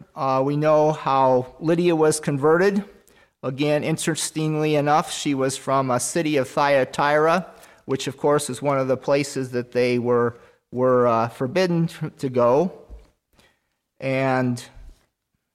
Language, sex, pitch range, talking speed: English, male, 135-165 Hz, 130 wpm